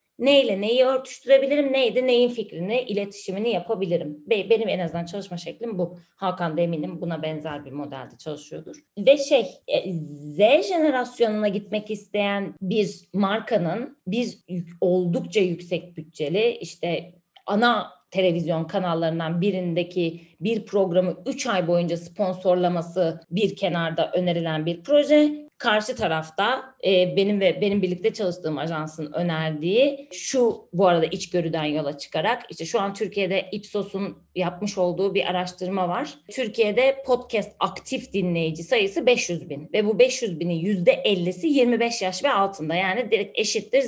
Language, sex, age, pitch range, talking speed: Turkish, female, 30-49, 175-230 Hz, 125 wpm